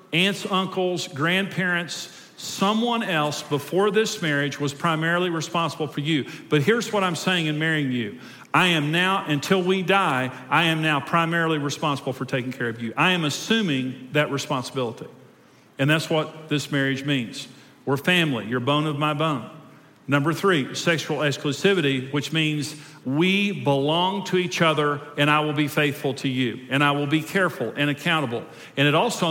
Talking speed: 170 wpm